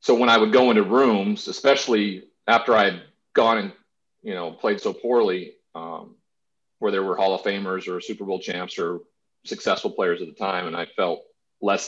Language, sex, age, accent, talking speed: English, male, 40-59, American, 195 wpm